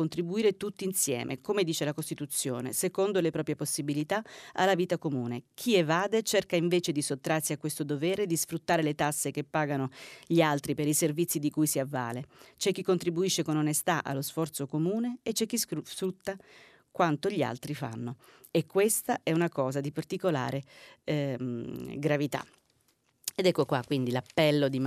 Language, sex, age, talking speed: Italian, female, 40-59, 165 wpm